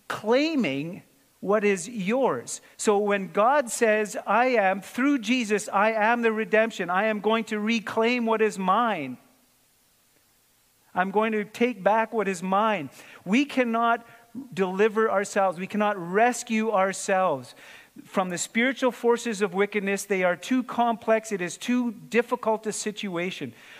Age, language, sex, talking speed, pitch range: 40-59, English, male, 140 wpm, 180-230 Hz